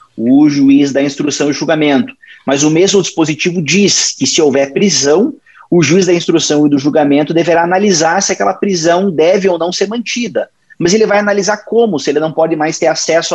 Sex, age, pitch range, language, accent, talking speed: male, 30-49, 150-230 Hz, Portuguese, Brazilian, 200 wpm